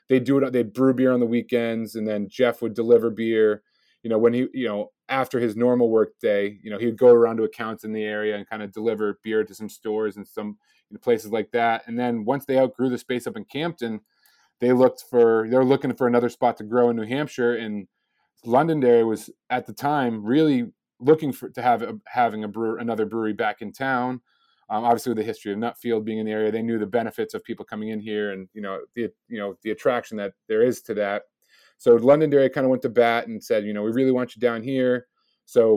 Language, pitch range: English, 110-125 Hz